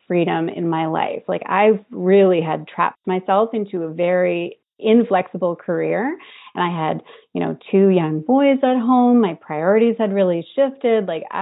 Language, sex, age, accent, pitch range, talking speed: English, female, 30-49, American, 180-250 Hz, 170 wpm